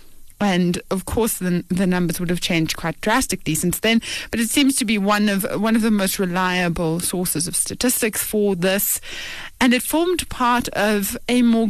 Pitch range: 180-235 Hz